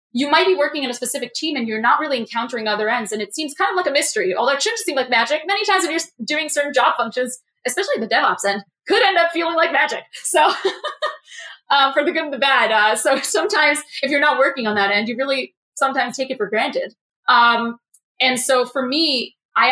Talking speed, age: 235 wpm, 20-39